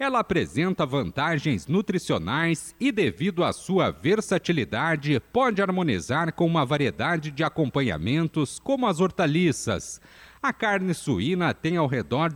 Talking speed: 120 wpm